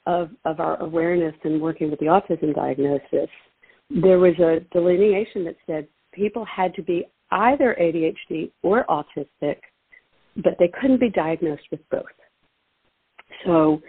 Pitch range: 160-220 Hz